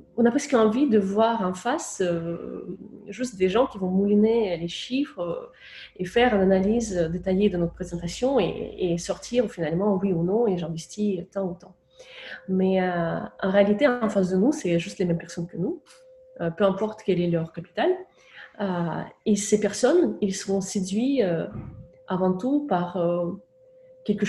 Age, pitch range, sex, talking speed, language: 30-49, 175-220 Hz, female, 180 wpm, French